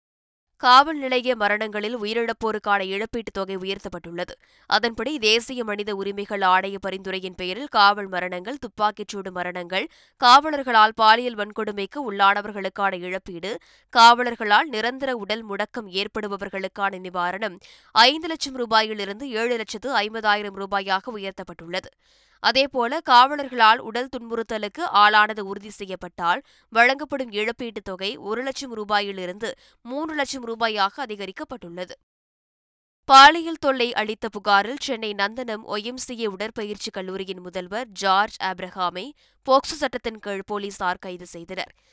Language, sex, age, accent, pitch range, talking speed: Tamil, female, 20-39, native, 195-240 Hz, 100 wpm